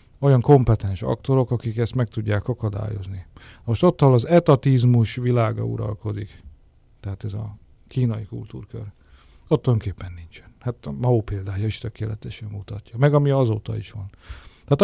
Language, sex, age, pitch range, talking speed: Hungarian, male, 50-69, 110-130 Hz, 145 wpm